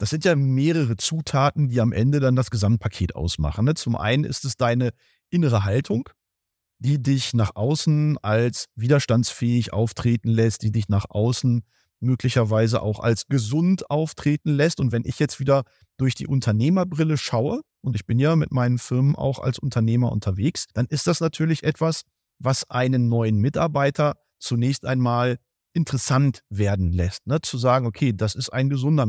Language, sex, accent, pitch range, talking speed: German, male, German, 115-145 Hz, 165 wpm